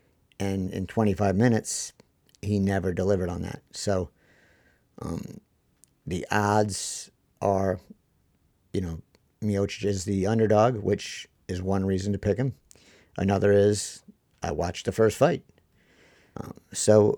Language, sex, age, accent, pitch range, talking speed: English, male, 50-69, American, 95-110 Hz, 125 wpm